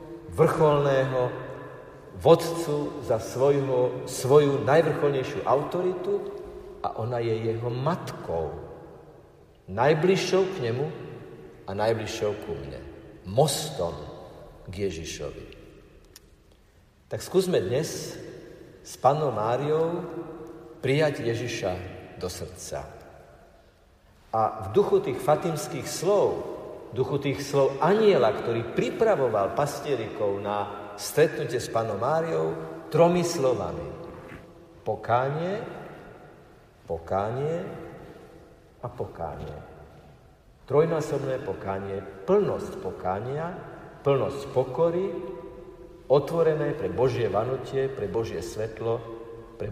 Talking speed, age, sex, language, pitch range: 85 wpm, 50-69, male, Slovak, 105-165 Hz